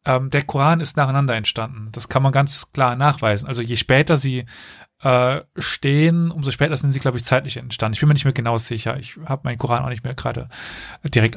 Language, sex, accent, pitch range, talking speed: German, male, German, 120-150 Hz, 220 wpm